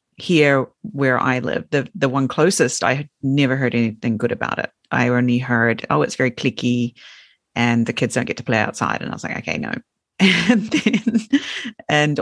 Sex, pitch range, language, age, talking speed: female, 130-180 Hz, English, 40-59, 195 wpm